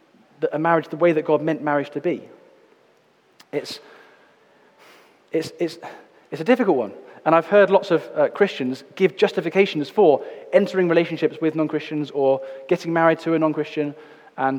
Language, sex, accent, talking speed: English, male, British, 165 wpm